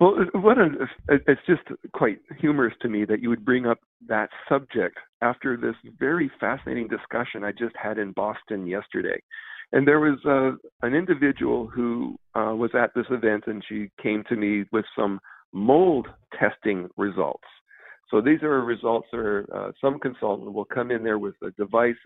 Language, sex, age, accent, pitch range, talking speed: English, male, 50-69, American, 105-135 Hz, 165 wpm